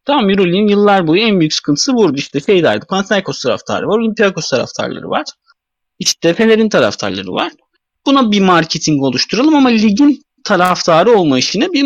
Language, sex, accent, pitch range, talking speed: Turkish, male, native, 145-235 Hz, 150 wpm